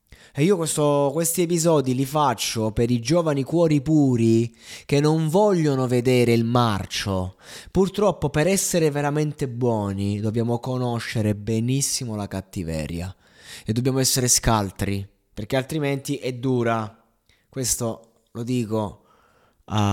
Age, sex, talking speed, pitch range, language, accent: 20-39, male, 115 wpm, 105-140 Hz, Italian, native